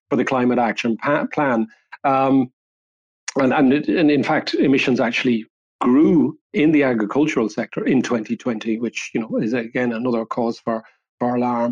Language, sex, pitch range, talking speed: English, male, 120-155 Hz, 145 wpm